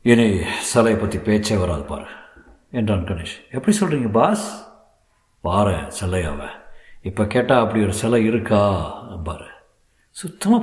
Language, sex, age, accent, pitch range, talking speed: Tamil, male, 50-69, native, 95-120 Hz, 115 wpm